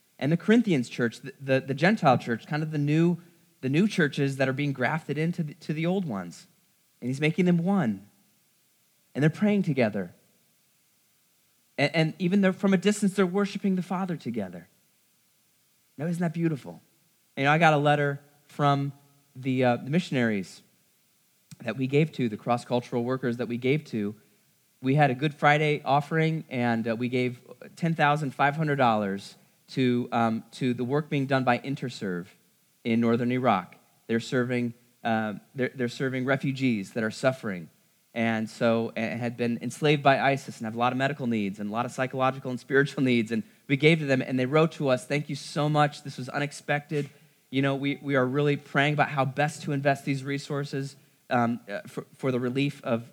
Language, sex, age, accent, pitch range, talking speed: English, male, 20-39, American, 120-150 Hz, 185 wpm